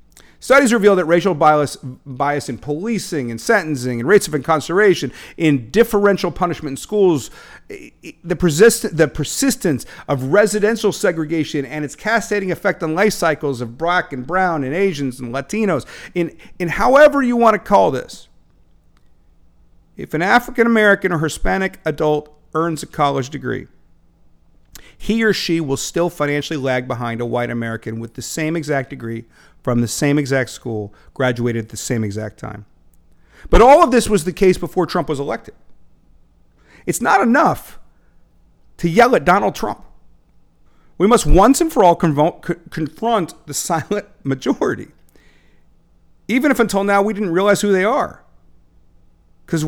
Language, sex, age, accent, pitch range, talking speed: English, male, 50-69, American, 125-195 Hz, 150 wpm